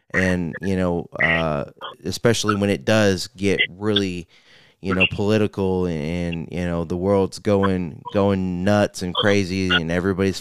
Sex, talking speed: male, 150 wpm